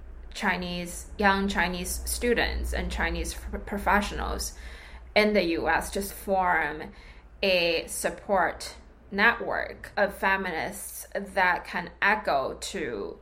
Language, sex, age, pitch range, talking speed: English, female, 20-39, 170-200 Hz, 95 wpm